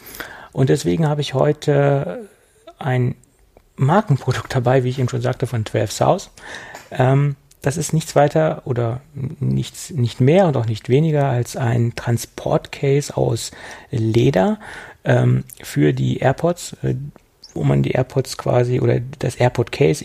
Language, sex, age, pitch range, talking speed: German, male, 30-49, 115-140 Hz, 135 wpm